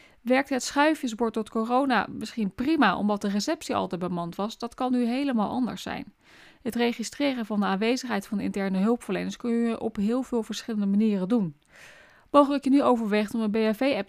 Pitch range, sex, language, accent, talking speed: 200-240 Hz, female, Dutch, Dutch, 185 wpm